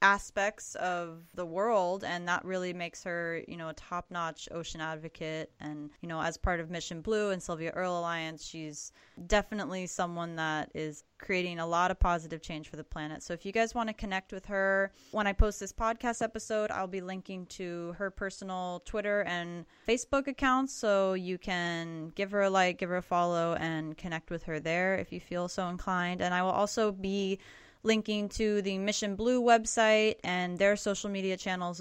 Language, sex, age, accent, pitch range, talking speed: English, female, 20-39, American, 170-215 Hz, 195 wpm